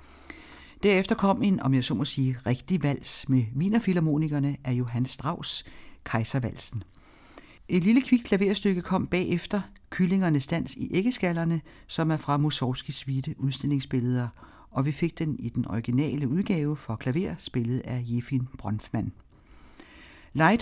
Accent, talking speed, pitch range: native, 135 wpm, 125-170 Hz